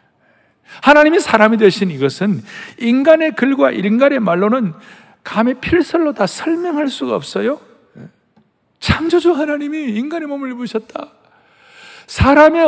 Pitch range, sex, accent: 155-245 Hz, male, native